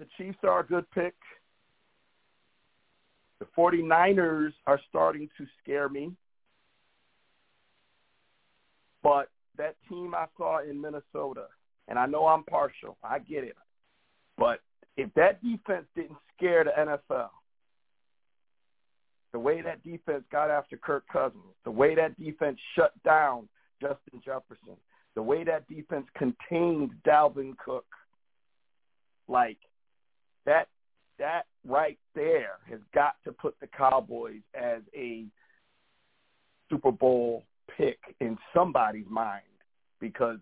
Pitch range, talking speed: 150-245 Hz, 115 wpm